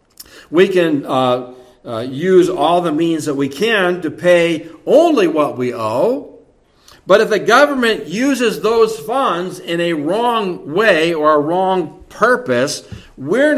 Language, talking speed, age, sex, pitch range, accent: English, 145 wpm, 60-79, male, 135-190 Hz, American